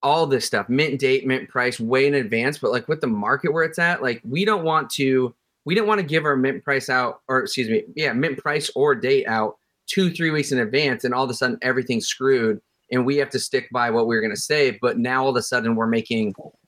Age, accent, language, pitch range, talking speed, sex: 30-49, American, English, 120-150 Hz, 260 wpm, male